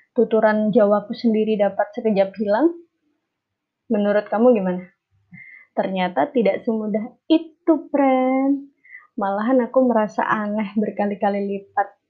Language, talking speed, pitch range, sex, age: Indonesian, 100 wpm, 205-245 Hz, female, 20-39